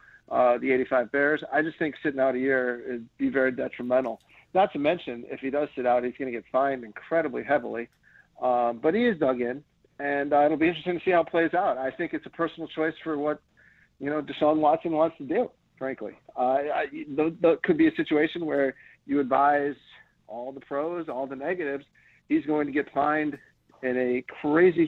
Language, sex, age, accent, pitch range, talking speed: English, male, 40-59, American, 130-160 Hz, 215 wpm